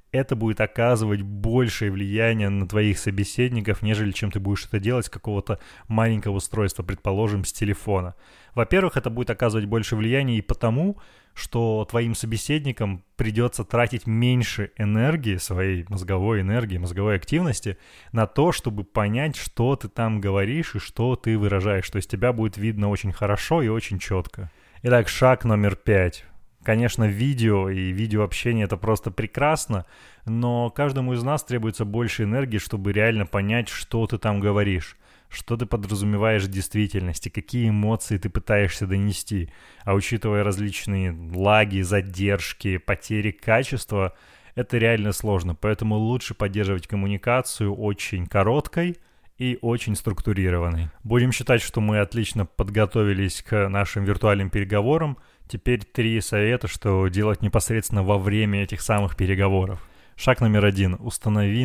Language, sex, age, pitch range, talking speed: Russian, male, 20-39, 100-115 Hz, 140 wpm